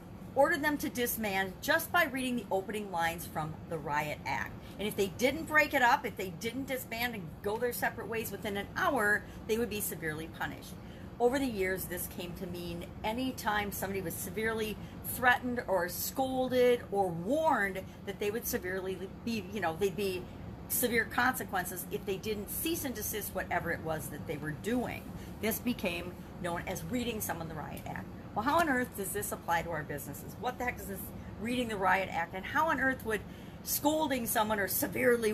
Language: English